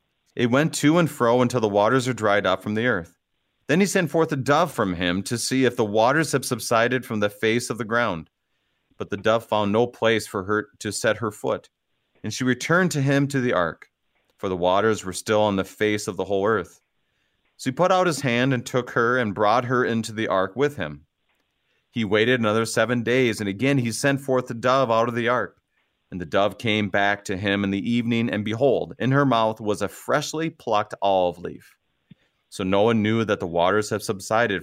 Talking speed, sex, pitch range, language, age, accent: 225 wpm, male, 100-130 Hz, English, 30-49, American